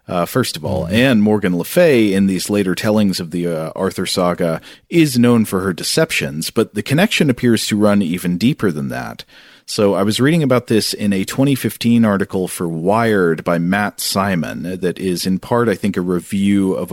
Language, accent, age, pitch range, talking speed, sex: English, American, 40-59, 90-115 Hz, 200 wpm, male